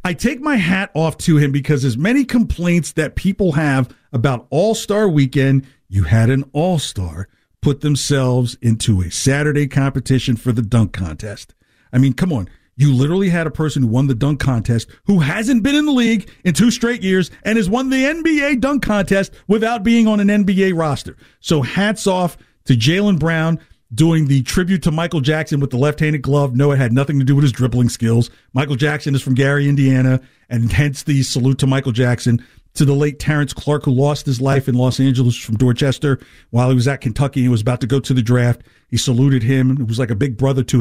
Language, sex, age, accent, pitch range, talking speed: English, male, 50-69, American, 130-175 Hz, 210 wpm